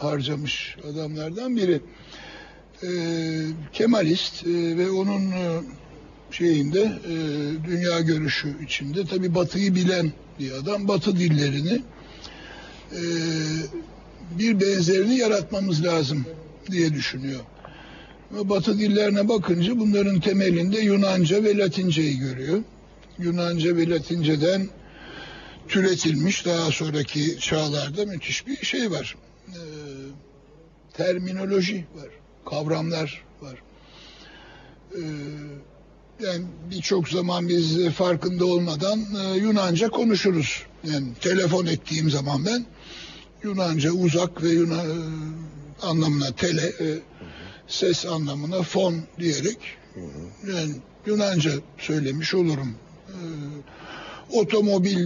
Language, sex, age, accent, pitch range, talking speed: Turkish, male, 60-79, native, 155-190 Hz, 90 wpm